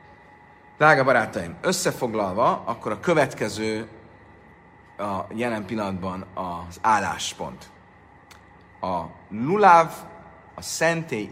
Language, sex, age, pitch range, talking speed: Hungarian, male, 40-59, 95-120 Hz, 80 wpm